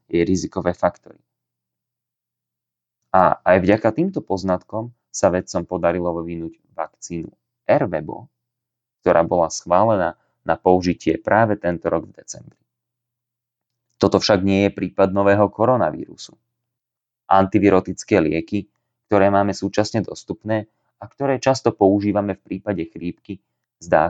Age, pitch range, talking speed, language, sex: 30-49, 85-115 Hz, 110 wpm, Slovak, male